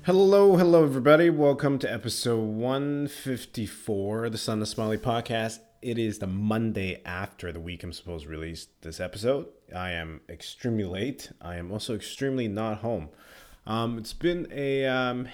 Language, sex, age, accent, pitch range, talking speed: English, male, 30-49, American, 90-115 Hz, 160 wpm